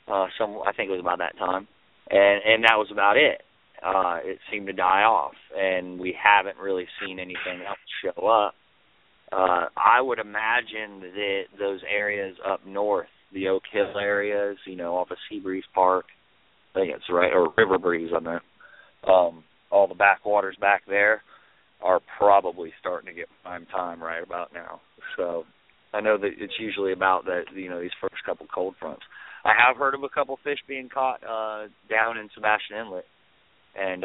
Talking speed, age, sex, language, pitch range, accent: 185 wpm, 30-49, male, English, 90-100 Hz, American